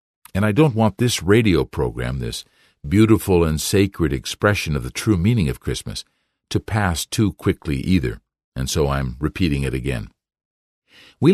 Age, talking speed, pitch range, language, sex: 50-69, 160 wpm, 80-105 Hz, English, male